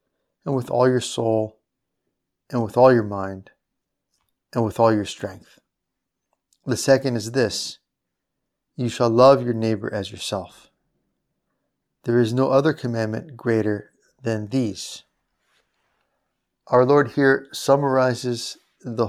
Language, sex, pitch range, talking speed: English, male, 110-135 Hz, 125 wpm